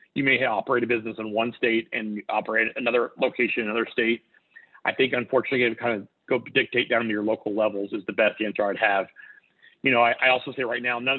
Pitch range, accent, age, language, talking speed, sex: 105-120 Hz, American, 40-59, English, 235 wpm, male